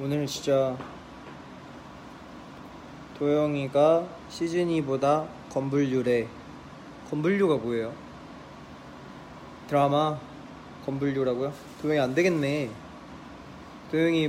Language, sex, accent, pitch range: Korean, male, native, 130-150 Hz